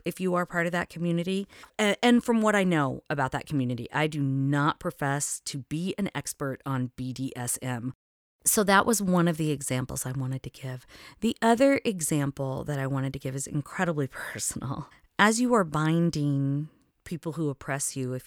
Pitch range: 130-170 Hz